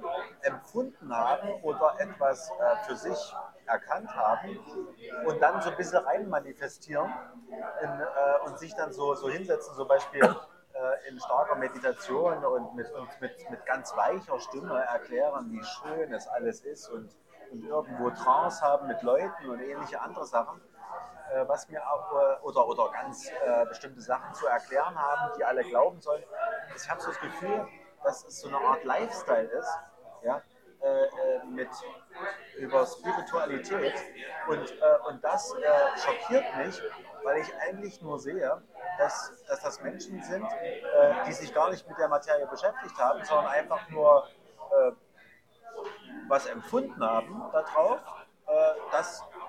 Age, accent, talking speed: 30-49, German, 155 wpm